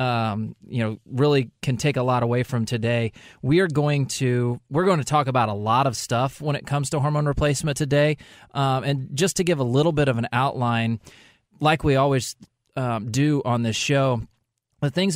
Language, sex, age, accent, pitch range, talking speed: English, male, 20-39, American, 120-150 Hz, 205 wpm